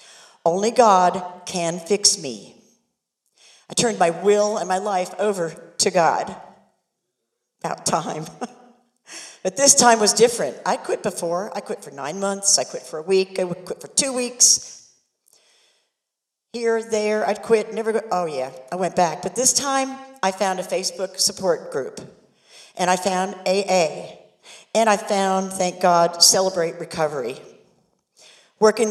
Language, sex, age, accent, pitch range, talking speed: English, female, 50-69, American, 180-225 Hz, 150 wpm